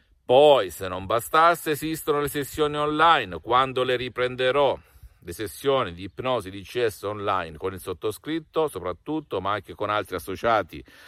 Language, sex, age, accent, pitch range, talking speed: Italian, male, 50-69, native, 105-145 Hz, 145 wpm